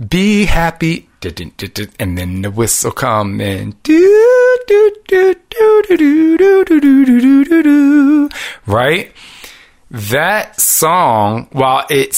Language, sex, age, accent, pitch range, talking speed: English, male, 30-49, American, 110-140 Hz, 65 wpm